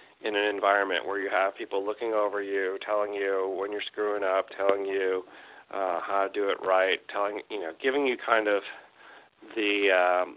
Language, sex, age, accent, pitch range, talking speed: English, male, 40-59, American, 95-115 Hz, 190 wpm